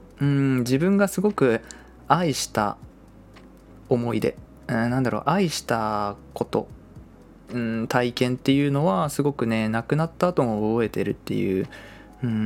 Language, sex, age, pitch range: Japanese, male, 20-39, 105-140 Hz